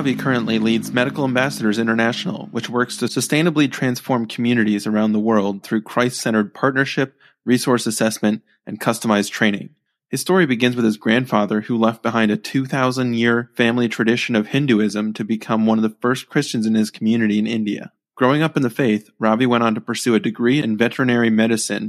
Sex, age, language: male, 20-39, English